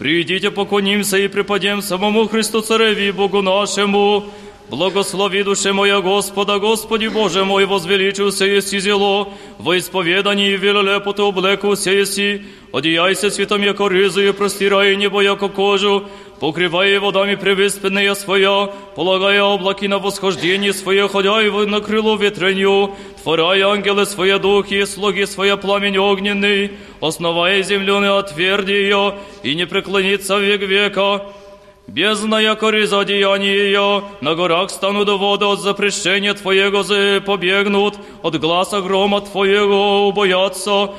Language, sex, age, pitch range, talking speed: Polish, male, 30-49, 195-200 Hz, 120 wpm